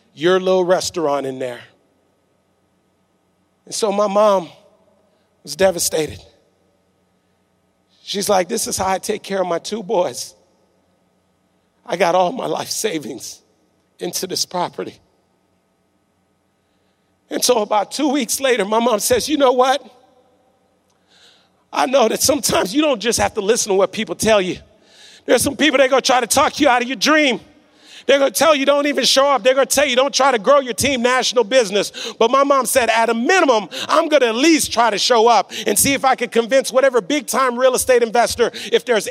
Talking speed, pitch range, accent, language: 190 wpm, 205-270 Hz, American, English